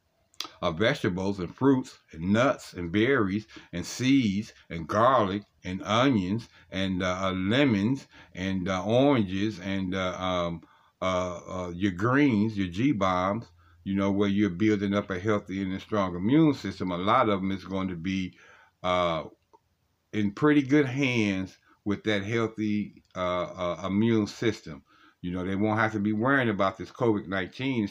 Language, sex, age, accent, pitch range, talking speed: English, male, 60-79, American, 95-110 Hz, 165 wpm